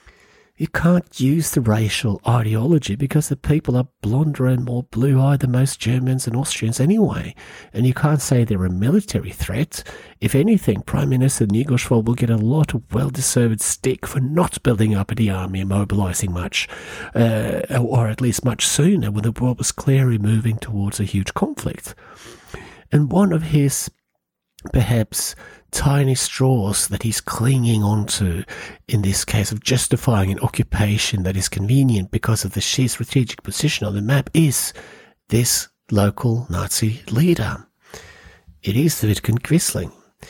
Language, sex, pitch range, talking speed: English, male, 105-140 Hz, 160 wpm